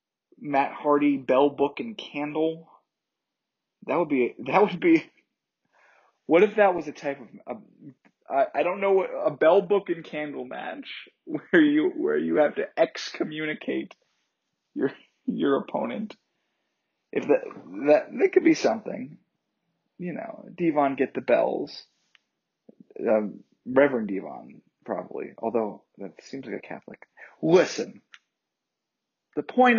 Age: 30-49